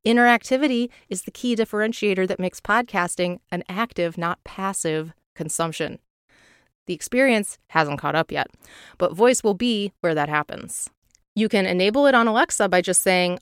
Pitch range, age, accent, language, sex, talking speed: 170-210 Hz, 30-49, American, English, female, 155 wpm